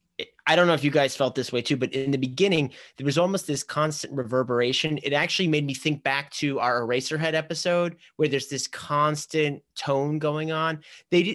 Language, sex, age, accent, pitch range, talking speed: English, male, 30-49, American, 130-165 Hz, 200 wpm